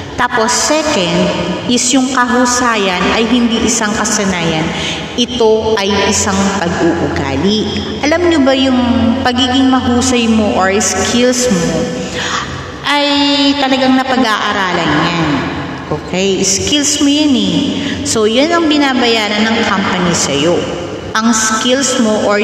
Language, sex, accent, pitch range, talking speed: Filipino, female, native, 185-245 Hz, 115 wpm